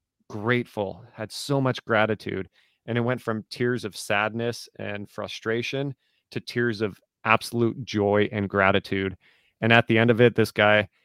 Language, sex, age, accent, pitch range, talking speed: English, male, 30-49, American, 105-120 Hz, 160 wpm